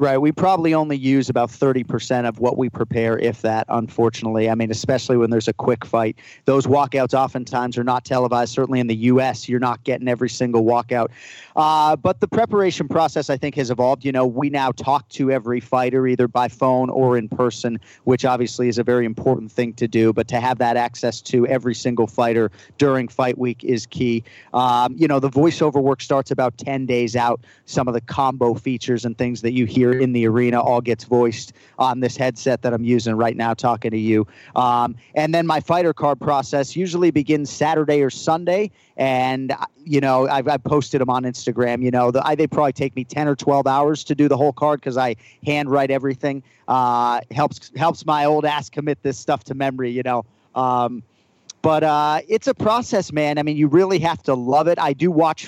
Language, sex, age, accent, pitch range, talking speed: English, male, 40-59, American, 120-145 Hz, 210 wpm